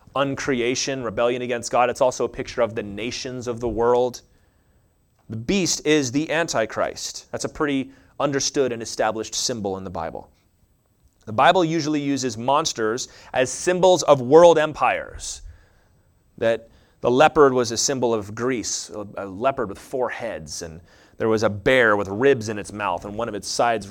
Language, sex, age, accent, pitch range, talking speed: English, male, 30-49, American, 110-165 Hz, 170 wpm